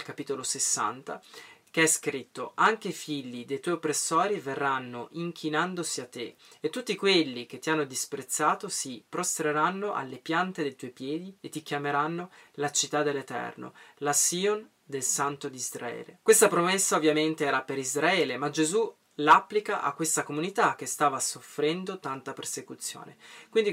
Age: 20-39